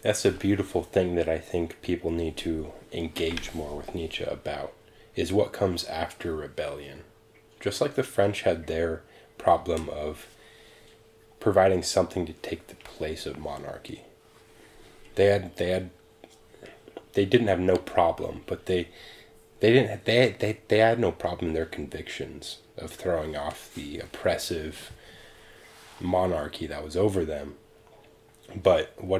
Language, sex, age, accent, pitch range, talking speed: English, male, 30-49, American, 80-110 Hz, 145 wpm